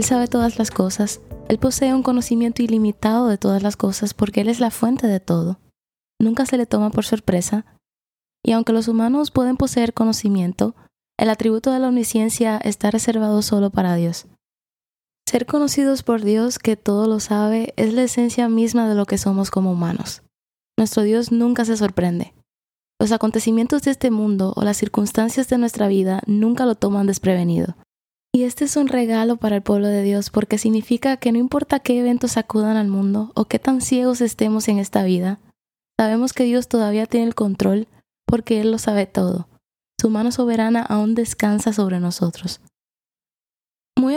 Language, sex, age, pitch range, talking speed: Spanish, female, 20-39, 205-235 Hz, 175 wpm